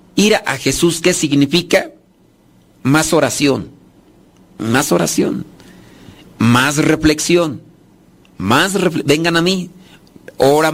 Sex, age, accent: male, 50-69, Mexican